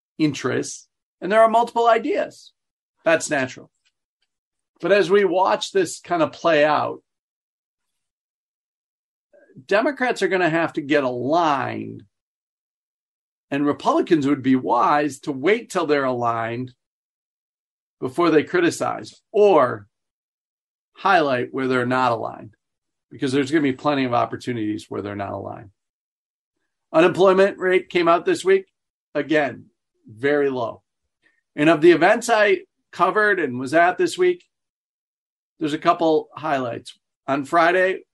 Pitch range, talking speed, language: 135-205 Hz, 130 wpm, English